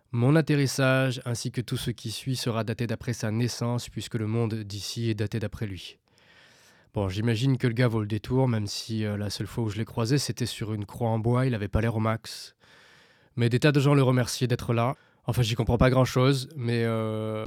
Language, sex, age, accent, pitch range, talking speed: French, male, 20-39, French, 110-130 Hz, 230 wpm